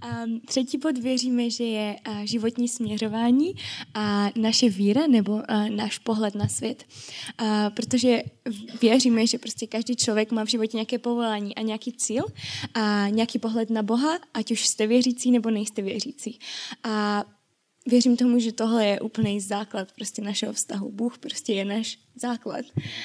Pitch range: 210-240 Hz